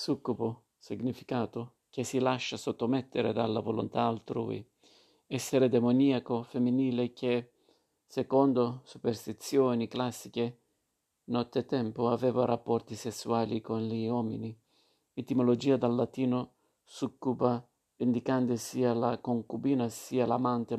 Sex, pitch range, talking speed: male, 120-135 Hz, 95 wpm